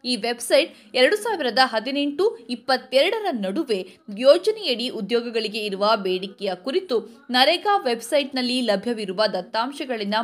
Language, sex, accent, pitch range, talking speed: Kannada, female, native, 220-315 Hz, 95 wpm